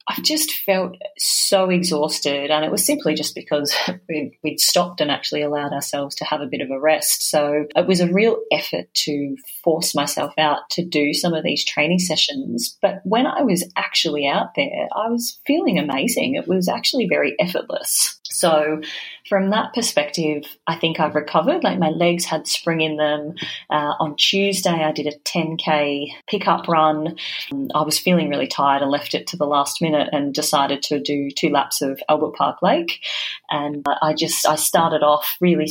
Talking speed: 190 wpm